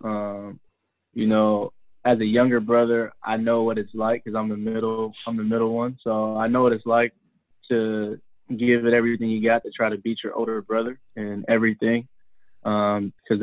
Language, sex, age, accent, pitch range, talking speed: English, male, 20-39, American, 105-115 Hz, 185 wpm